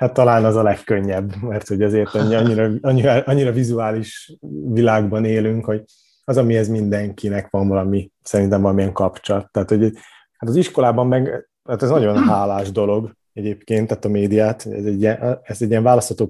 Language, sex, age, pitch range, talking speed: Hungarian, male, 30-49, 100-115 Hz, 160 wpm